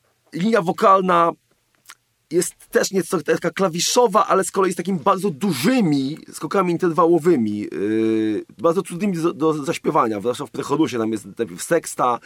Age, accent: 40-59, native